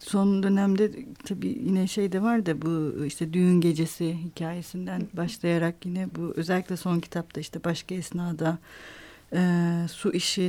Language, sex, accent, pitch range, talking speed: Turkish, female, native, 165-205 Hz, 145 wpm